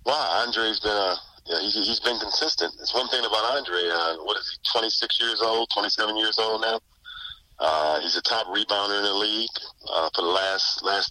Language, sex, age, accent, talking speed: English, male, 40-59, American, 210 wpm